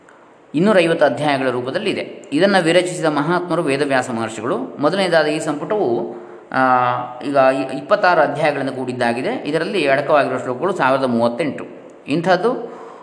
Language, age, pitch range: Kannada, 20-39, 130-180 Hz